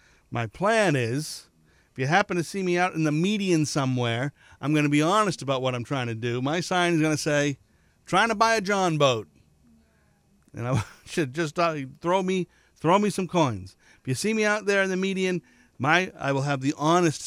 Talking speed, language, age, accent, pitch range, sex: 215 wpm, English, 50-69, American, 120-165 Hz, male